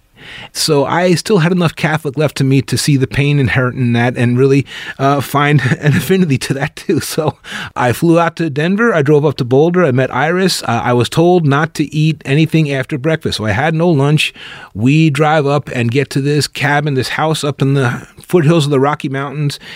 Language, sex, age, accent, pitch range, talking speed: English, male, 30-49, American, 130-160 Hz, 220 wpm